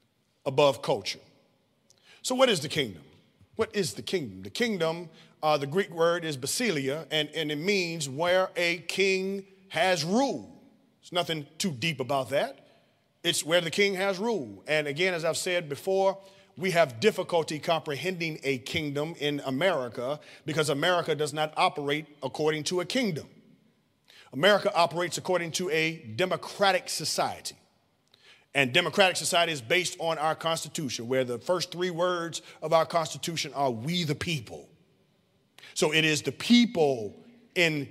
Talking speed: 150 wpm